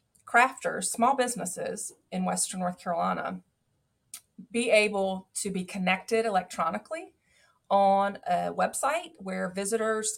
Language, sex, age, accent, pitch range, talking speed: English, female, 30-49, American, 185-225 Hz, 105 wpm